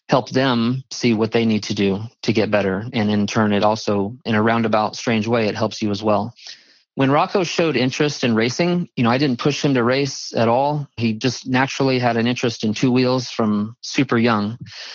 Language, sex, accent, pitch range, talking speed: English, male, American, 110-130 Hz, 215 wpm